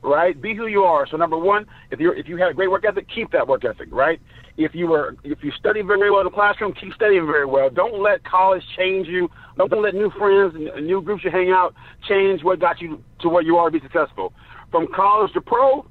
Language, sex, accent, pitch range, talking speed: English, male, American, 180-225 Hz, 255 wpm